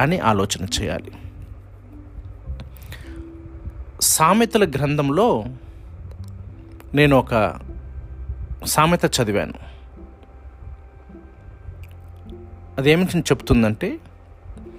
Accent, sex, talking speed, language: native, male, 45 wpm, Telugu